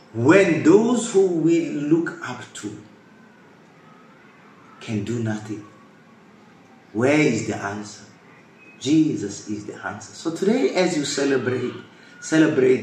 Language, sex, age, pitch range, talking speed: English, male, 30-49, 110-135 Hz, 110 wpm